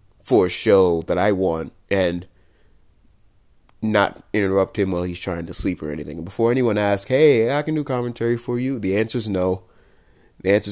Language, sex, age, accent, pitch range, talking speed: English, male, 20-39, American, 90-105 Hz, 185 wpm